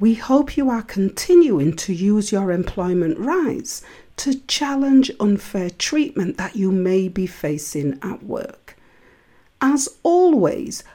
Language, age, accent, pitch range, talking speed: English, 40-59, British, 190-280 Hz, 125 wpm